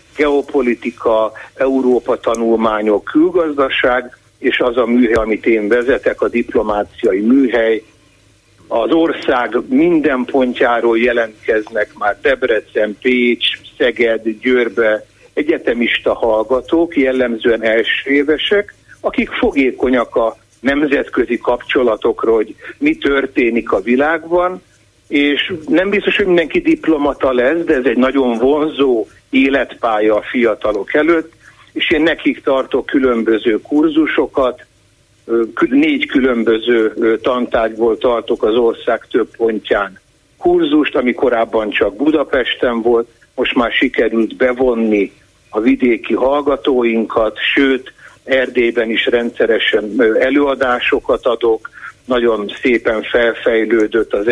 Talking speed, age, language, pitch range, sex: 100 wpm, 60-79, Hungarian, 115-180 Hz, male